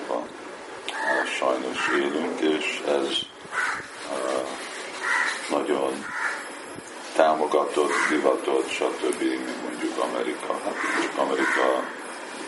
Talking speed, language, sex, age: 65 wpm, Hungarian, male, 50-69